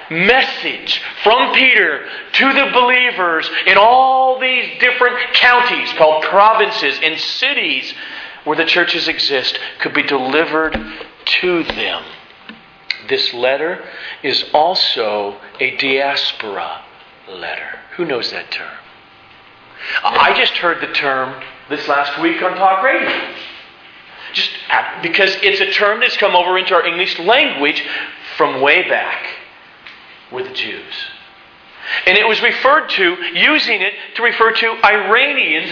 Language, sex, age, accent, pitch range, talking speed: English, male, 40-59, American, 165-250 Hz, 125 wpm